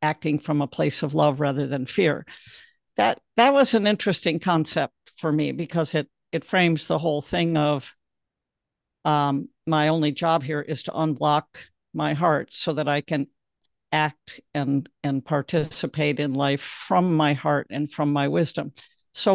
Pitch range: 150-180 Hz